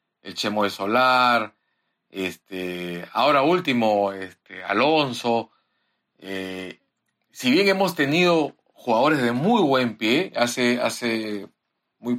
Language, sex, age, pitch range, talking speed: Spanish, male, 50-69, 105-140 Hz, 110 wpm